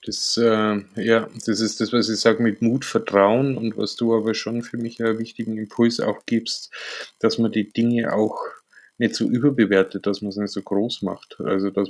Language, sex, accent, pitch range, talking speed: German, male, German, 100-115 Hz, 205 wpm